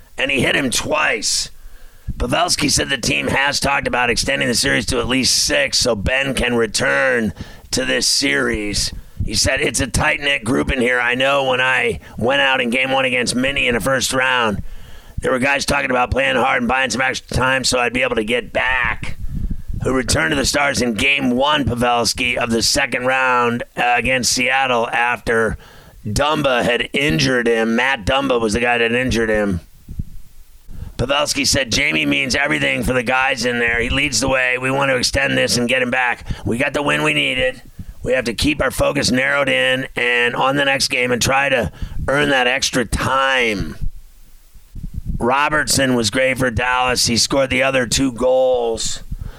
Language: English